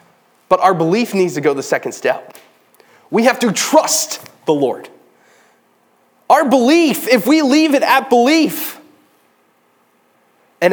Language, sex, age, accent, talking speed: English, male, 20-39, American, 135 wpm